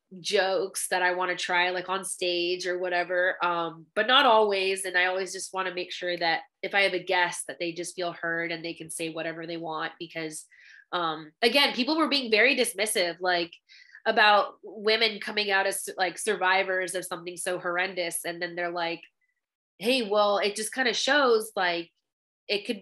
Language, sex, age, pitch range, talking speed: English, female, 20-39, 175-215 Hz, 195 wpm